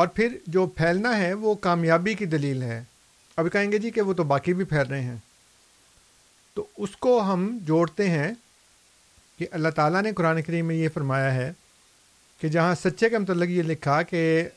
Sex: male